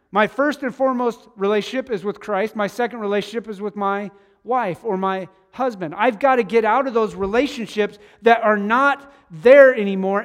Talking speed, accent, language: 180 wpm, American, English